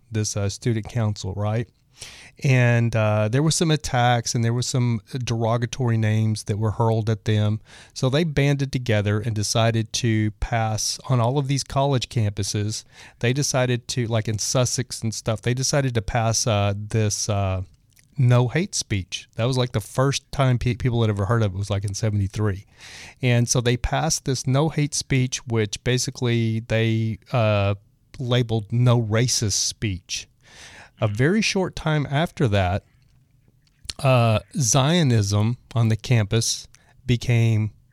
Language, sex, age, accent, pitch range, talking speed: English, male, 30-49, American, 110-130 Hz, 155 wpm